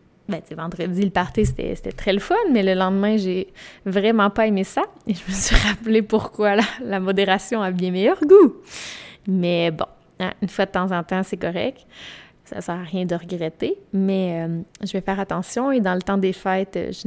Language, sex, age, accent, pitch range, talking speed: French, female, 20-39, Canadian, 185-210 Hz, 210 wpm